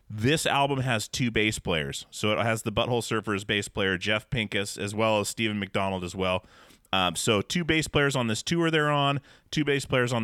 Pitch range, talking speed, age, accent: 105-125 Hz, 215 wpm, 30-49, American